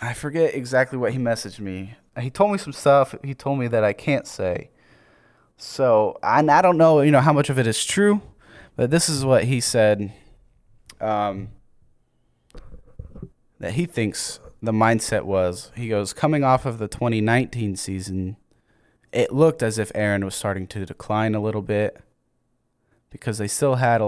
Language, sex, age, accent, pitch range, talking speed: English, male, 20-39, American, 105-130 Hz, 170 wpm